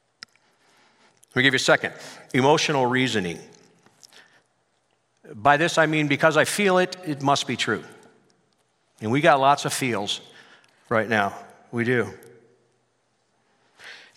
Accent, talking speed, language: American, 130 wpm, English